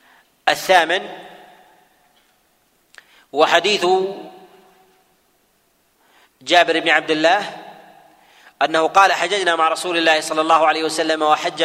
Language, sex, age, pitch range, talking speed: Arabic, male, 40-59, 160-215 Hz, 90 wpm